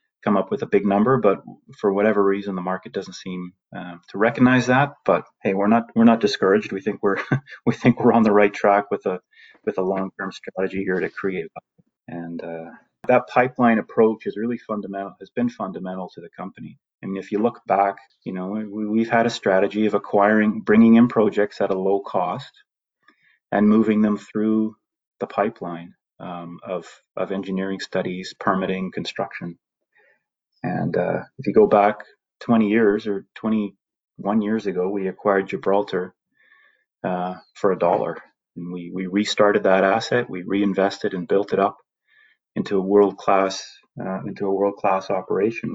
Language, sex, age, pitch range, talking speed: English, male, 30-49, 95-110 Hz, 170 wpm